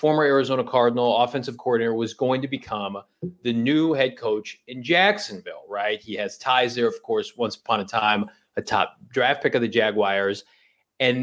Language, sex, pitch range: English, male, 120-155 Hz